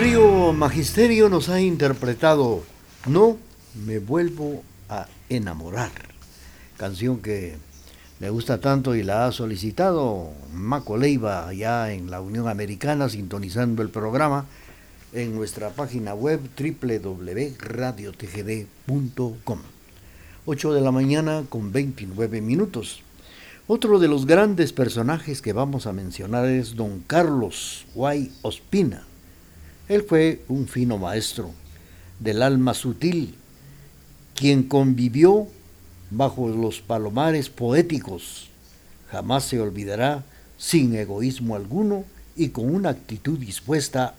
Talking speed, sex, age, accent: 110 wpm, male, 60-79, Mexican